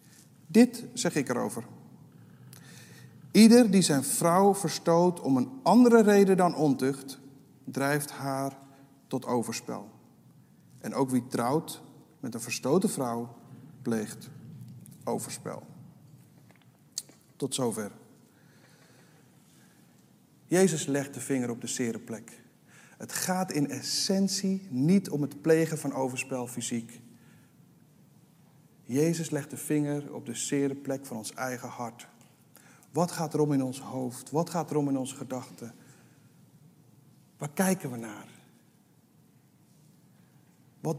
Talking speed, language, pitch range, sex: 115 wpm, Dutch, 125-160 Hz, male